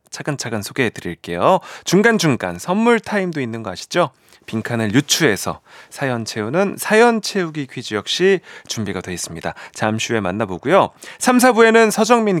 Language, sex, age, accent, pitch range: Korean, male, 30-49, native, 105-180 Hz